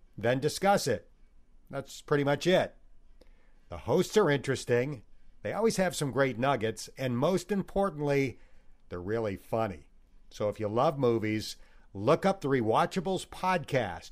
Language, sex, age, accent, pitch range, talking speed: English, male, 50-69, American, 110-165 Hz, 140 wpm